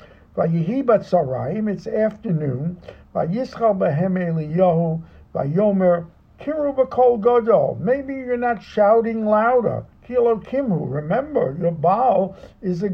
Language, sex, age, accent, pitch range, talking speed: English, male, 50-69, American, 160-220 Hz, 115 wpm